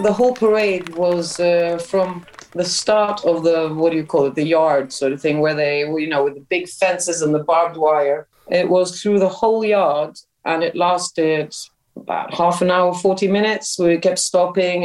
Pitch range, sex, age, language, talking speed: 155-185 Hz, female, 30-49, English, 205 wpm